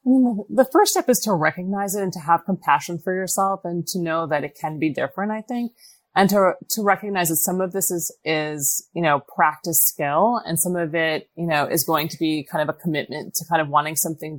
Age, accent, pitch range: 30-49, American, 160-210 Hz